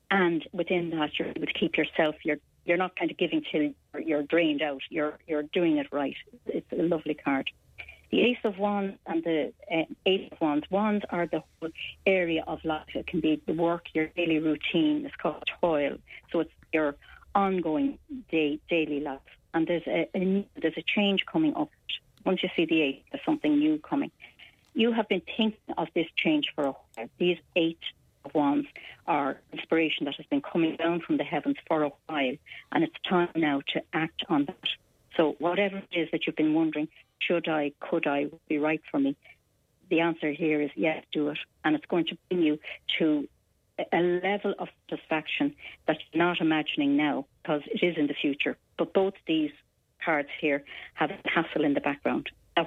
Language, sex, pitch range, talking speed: English, female, 155-190 Hz, 195 wpm